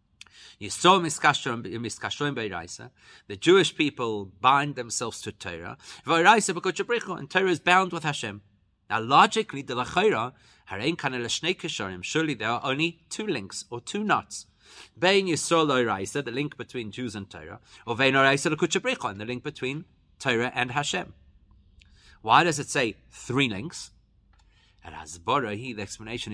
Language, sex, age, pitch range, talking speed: English, male, 30-49, 105-150 Hz, 150 wpm